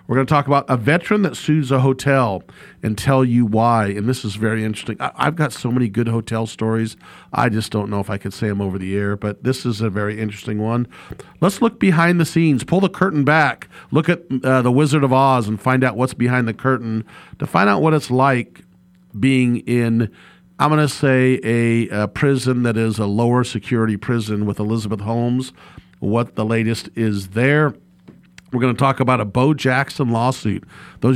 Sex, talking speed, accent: male, 210 wpm, American